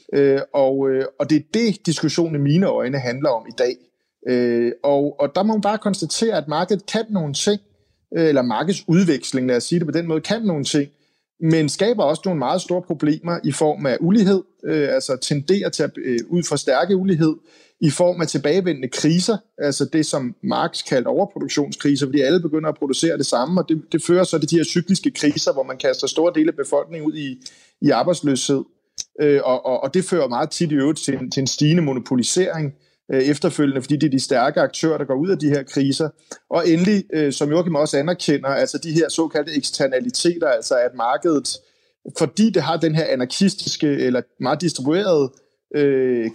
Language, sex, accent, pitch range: Danish, male, native, 140-180 Hz